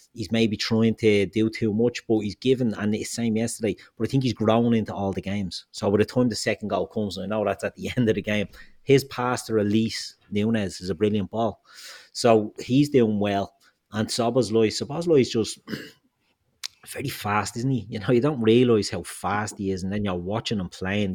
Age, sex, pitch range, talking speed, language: 30-49, male, 100-120 Hz, 220 wpm, English